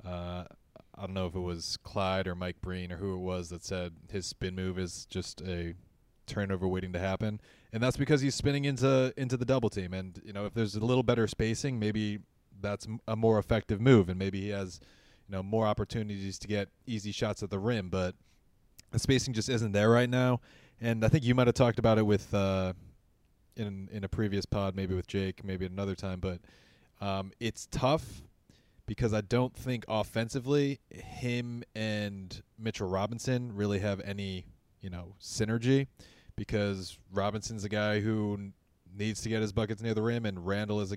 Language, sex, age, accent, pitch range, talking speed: English, male, 20-39, American, 95-110 Hz, 195 wpm